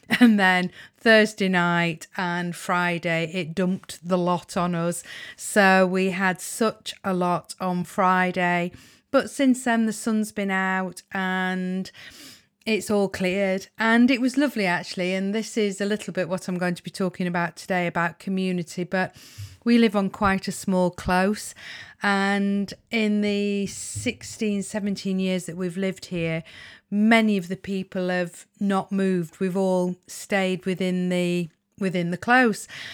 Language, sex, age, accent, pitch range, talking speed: English, female, 40-59, British, 180-210 Hz, 155 wpm